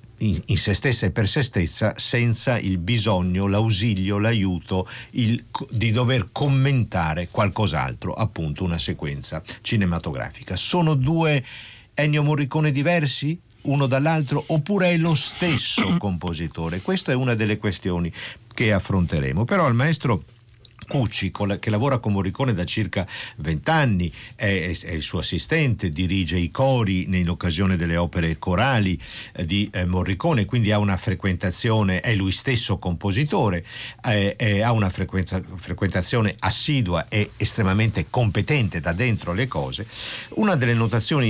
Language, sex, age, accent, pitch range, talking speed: Italian, male, 50-69, native, 90-125 Hz, 130 wpm